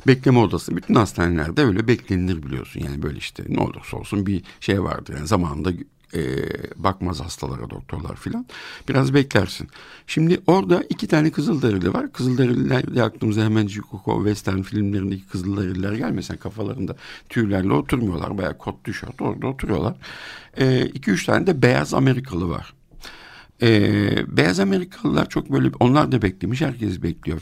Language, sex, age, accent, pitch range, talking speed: Turkish, male, 60-79, native, 100-140 Hz, 140 wpm